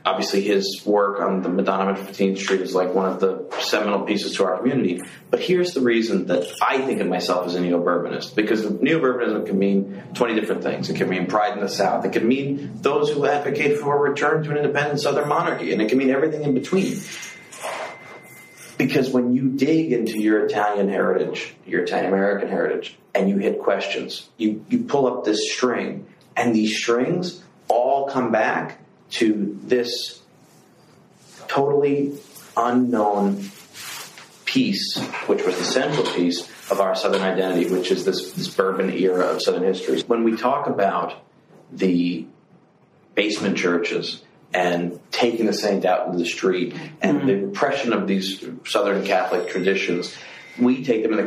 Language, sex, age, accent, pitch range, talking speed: English, male, 30-49, American, 95-140 Hz, 170 wpm